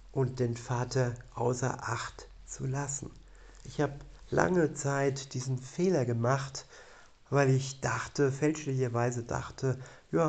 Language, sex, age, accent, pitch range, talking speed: German, male, 50-69, German, 125-140 Hz, 115 wpm